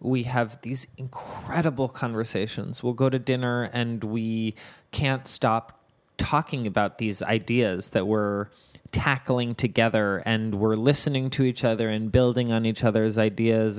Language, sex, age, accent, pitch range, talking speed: English, male, 20-39, American, 115-135 Hz, 145 wpm